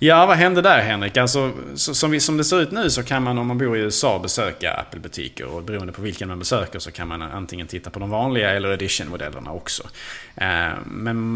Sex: male